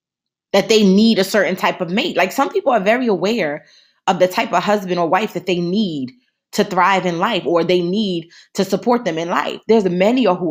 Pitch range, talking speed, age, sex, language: 165-220 Hz, 225 wpm, 20-39, female, English